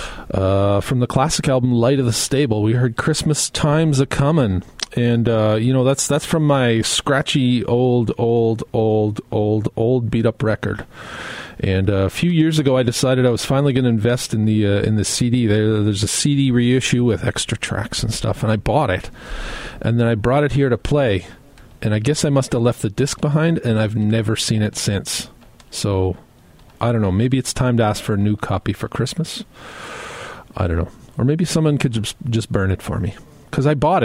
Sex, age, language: male, 40-59, English